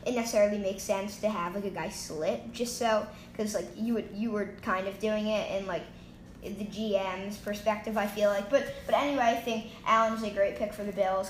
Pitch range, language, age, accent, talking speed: 195-220 Hz, English, 10-29, American, 220 wpm